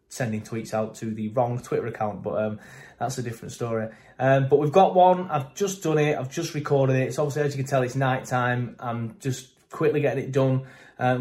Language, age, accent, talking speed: English, 20-39, British, 230 wpm